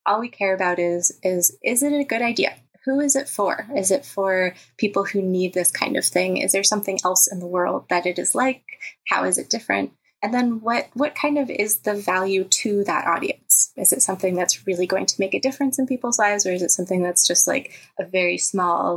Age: 20-39